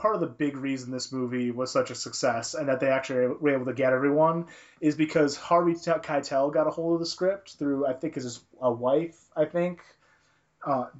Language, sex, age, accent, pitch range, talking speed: English, male, 30-49, American, 125-150 Hz, 215 wpm